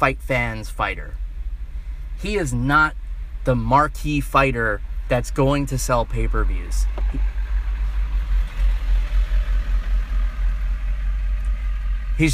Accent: American